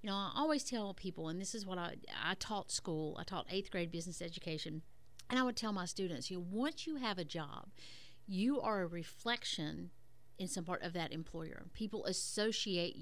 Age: 50-69